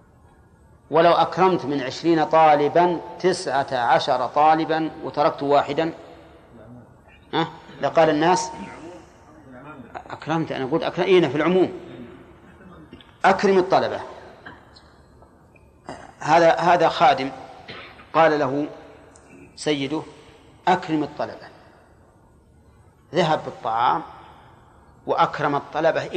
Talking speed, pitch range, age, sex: 80 wpm, 130-165 Hz, 40-59, male